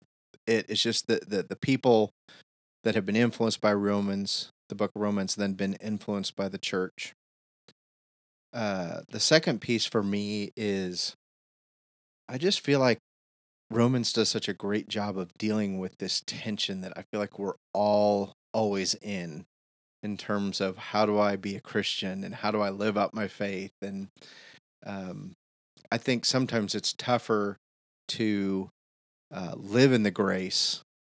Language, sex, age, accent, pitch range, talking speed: English, male, 30-49, American, 95-110 Hz, 160 wpm